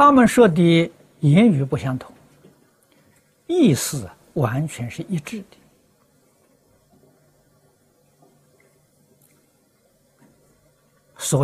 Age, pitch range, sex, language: 60-79, 130-185 Hz, male, Chinese